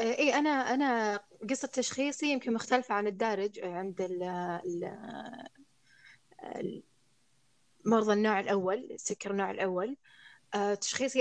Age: 20-39